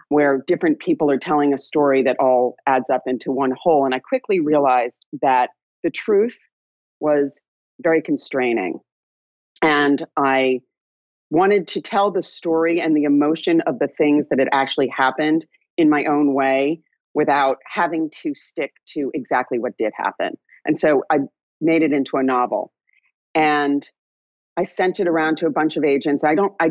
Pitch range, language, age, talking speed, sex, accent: 140-200 Hz, English, 40-59, 170 wpm, female, American